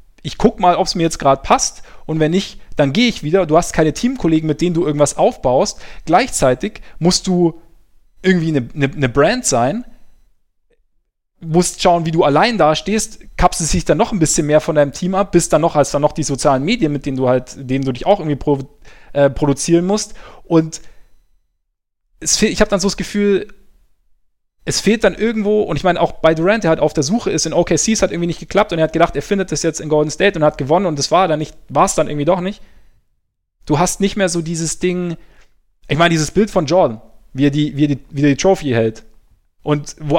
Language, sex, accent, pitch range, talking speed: German, male, German, 145-185 Hz, 230 wpm